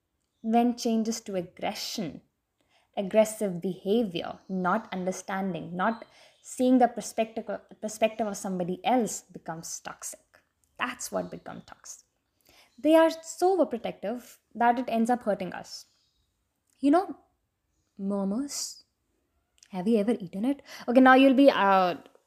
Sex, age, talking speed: female, 20-39, 120 wpm